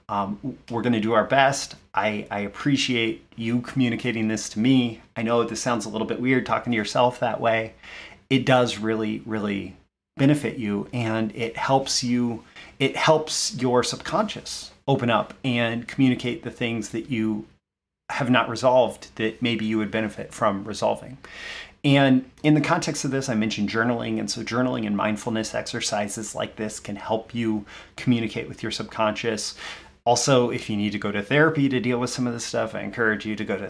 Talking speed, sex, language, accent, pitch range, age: 180 wpm, male, English, American, 110-130 Hz, 30-49